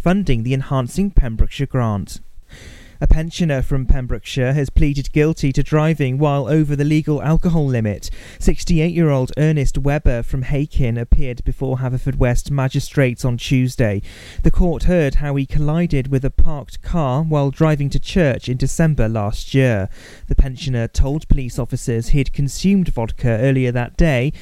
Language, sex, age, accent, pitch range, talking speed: English, male, 30-49, British, 125-150 Hz, 150 wpm